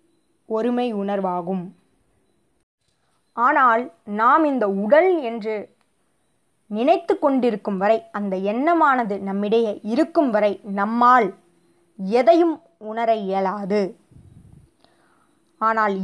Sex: female